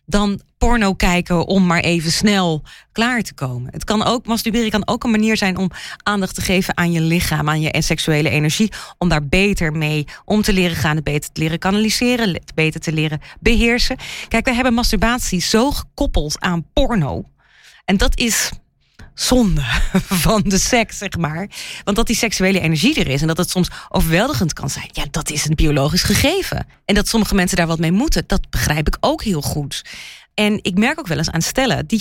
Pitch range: 165-225 Hz